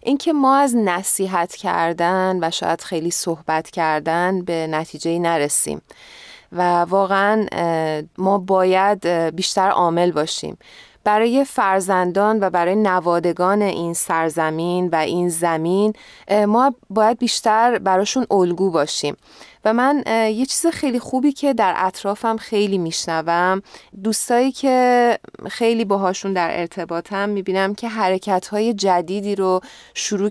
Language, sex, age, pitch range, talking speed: Persian, female, 20-39, 175-225 Hz, 120 wpm